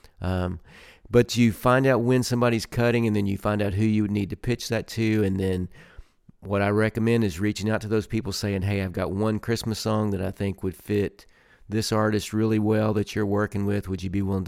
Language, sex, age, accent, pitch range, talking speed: English, male, 40-59, American, 95-115 Hz, 230 wpm